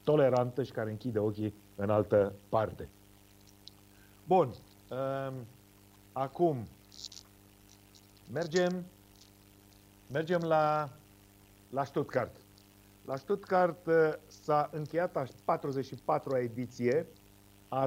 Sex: male